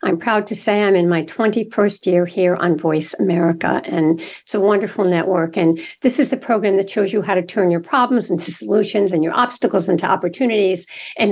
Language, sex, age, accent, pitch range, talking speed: English, female, 60-79, American, 190-240 Hz, 205 wpm